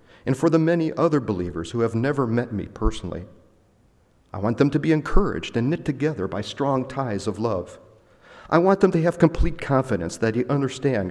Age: 40-59